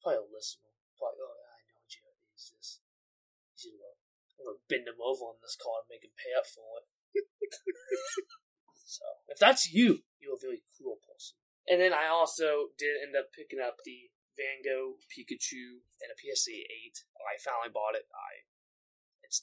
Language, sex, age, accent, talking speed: English, male, 20-39, American, 185 wpm